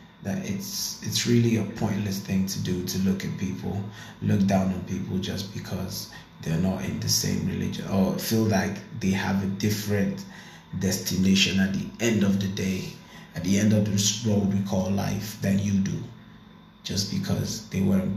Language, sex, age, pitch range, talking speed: English, male, 20-39, 100-115 Hz, 180 wpm